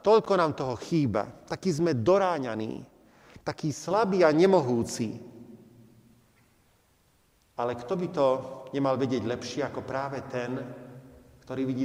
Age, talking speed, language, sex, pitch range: 40-59, 115 wpm, Slovak, male, 125-175 Hz